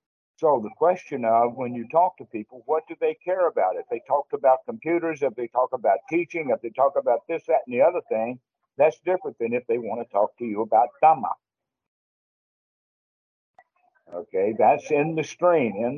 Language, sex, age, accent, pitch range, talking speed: English, male, 60-79, American, 120-165 Hz, 195 wpm